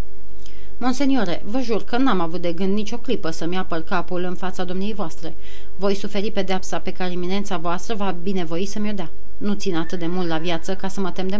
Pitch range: 180-215 Hz